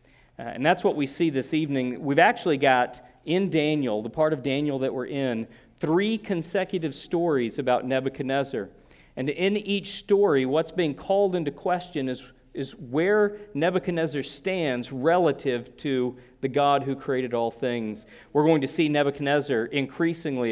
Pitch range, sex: 125-150 Hz, male